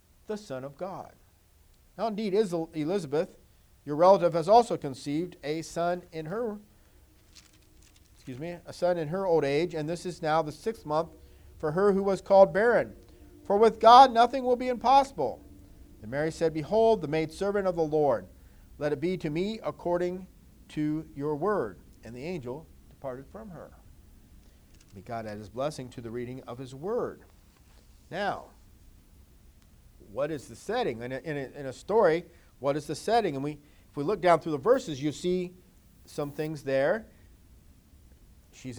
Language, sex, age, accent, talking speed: English, male, 50-69, American, 175 wpm